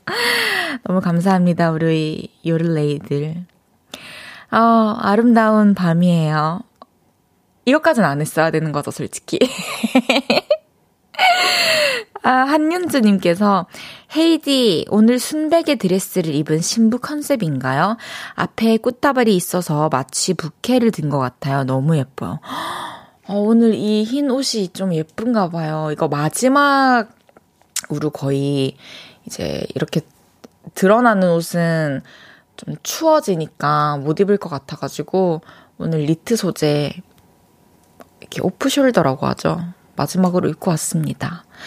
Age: 20-39